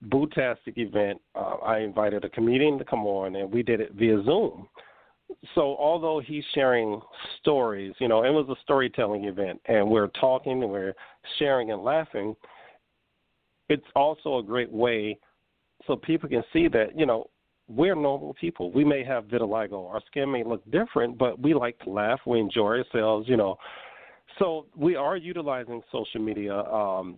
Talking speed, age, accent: 170 wpm, 50-69, American